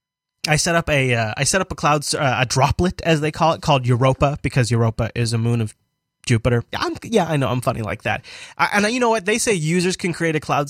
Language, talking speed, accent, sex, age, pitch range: English, 265 wpm, American, male, 20-39, 130-165 Hz